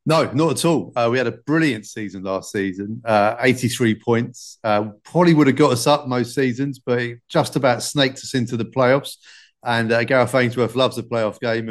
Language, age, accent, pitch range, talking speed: English, 30-49, British, 115-130 Hz, 210 wpm